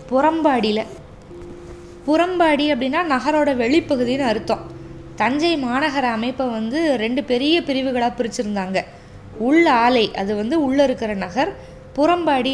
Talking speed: 105 wpm